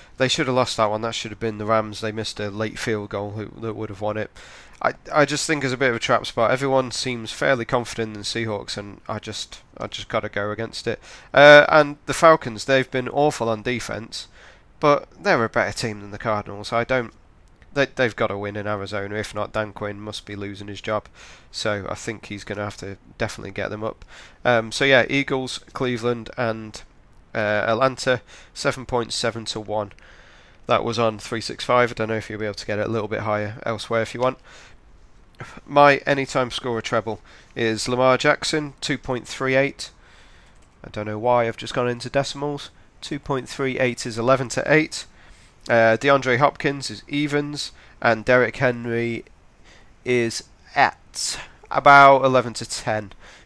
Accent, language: British, English